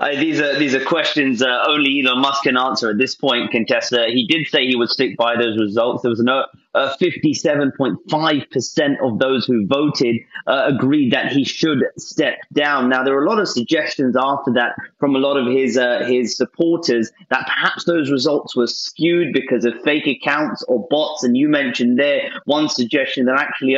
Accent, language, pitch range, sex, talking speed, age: British, English, 120-155 Hz, male, 195 wpm, 30-49